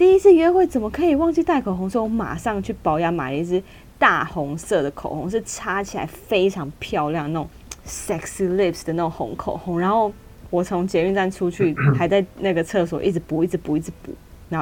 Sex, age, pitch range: female, 20-39, 160-205 Hz